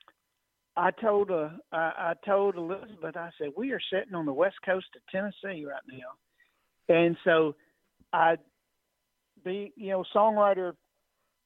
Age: 50-69